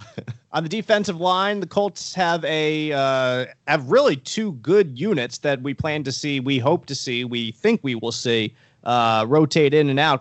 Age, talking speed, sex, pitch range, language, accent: 30-49, 195 wpm, male, 130-160 Hz, English, American